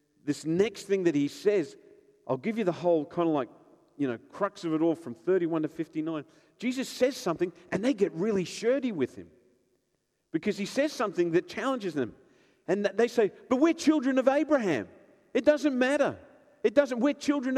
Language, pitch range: English, 175-250 Hz